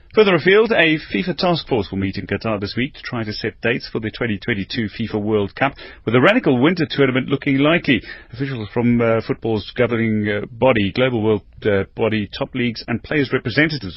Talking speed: 200 wpm